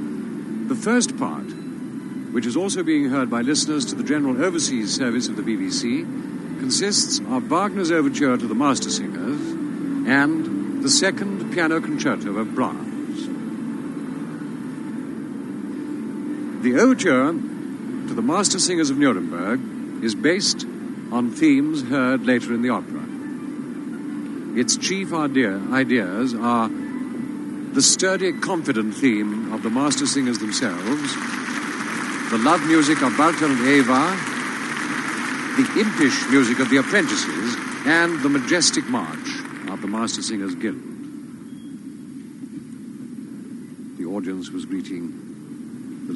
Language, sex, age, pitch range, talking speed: English, male, 60-79, 255-280 Hz, 115 wpm